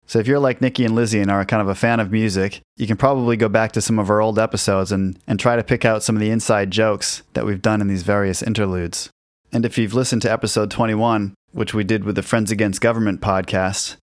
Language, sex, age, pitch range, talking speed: English, male, 20-39, 100-115 Hz, 255 wpm